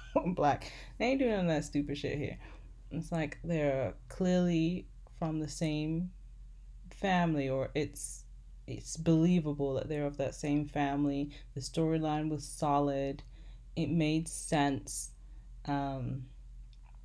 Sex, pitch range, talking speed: female, 130-160 Hz, 125 wpm